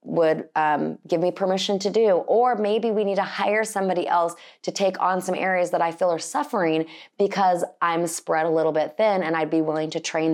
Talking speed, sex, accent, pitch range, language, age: 220 wpm, female, American, 160-205 Hz, English, 30-49